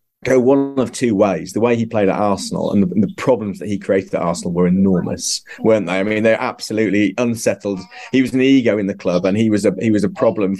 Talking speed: 250 wpm